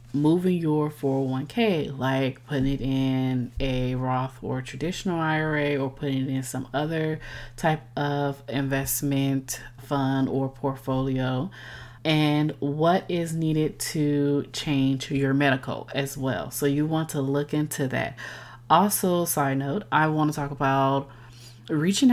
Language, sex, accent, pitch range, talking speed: English, female, American, 130-150 Hz, 135 wpm